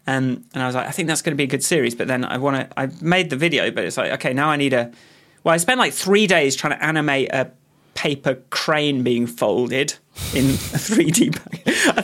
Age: 30-49